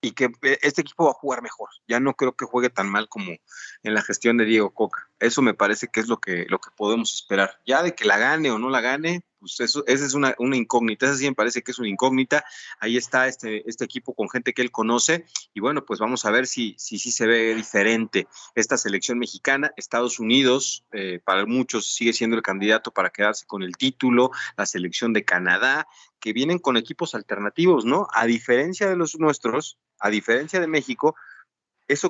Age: 30-49